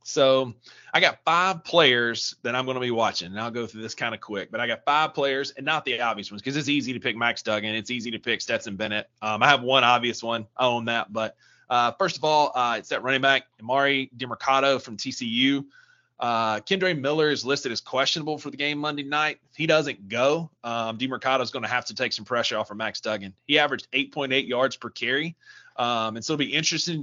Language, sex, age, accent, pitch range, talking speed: English, male, 20-39, American, 115-145 Hz, 240 wpm